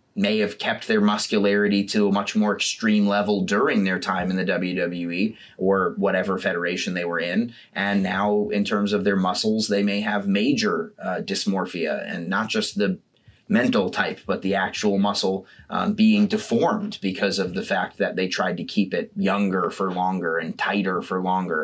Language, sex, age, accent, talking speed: English, male, 30-49, American, 185 wpm